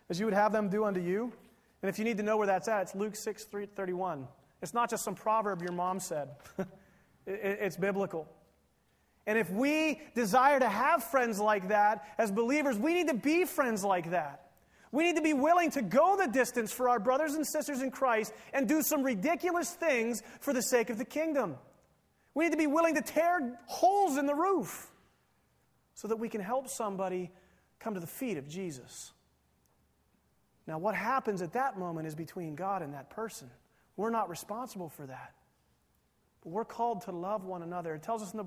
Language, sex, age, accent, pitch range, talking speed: English, male, 30-49, American, 175-245 Hz, 200 wpm